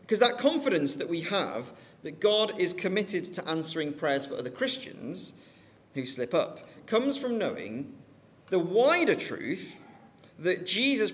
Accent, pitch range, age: British, 145-215 Hz, 40-59